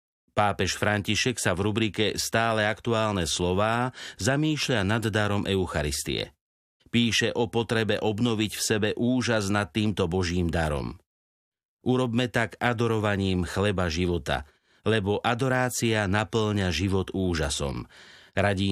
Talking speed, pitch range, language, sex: 110 wpm, 95-115 Hz, Slovak, male